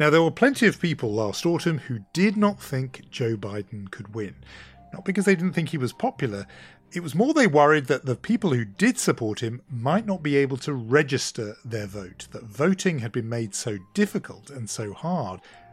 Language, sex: English, male